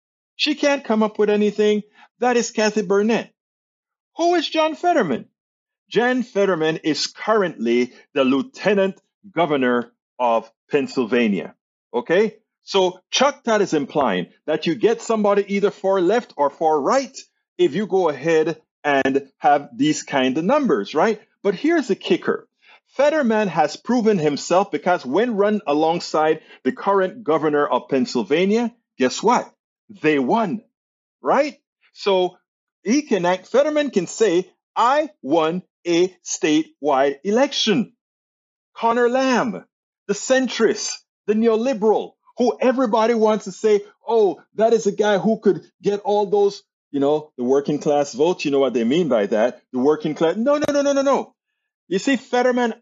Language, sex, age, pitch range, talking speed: English, male, 50-69, 160-245 Hz, 150 wpm